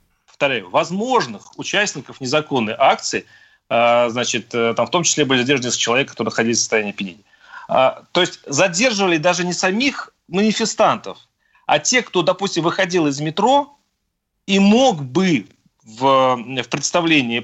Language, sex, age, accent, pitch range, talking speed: Russian, male, 30-49, native, 125-190 Hz, 125 wpm